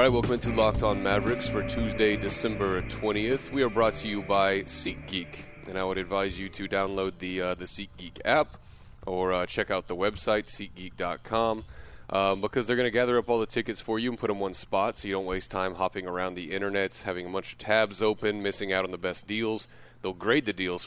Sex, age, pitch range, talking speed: male, 30-49, 95-115 Hz, 225 wpm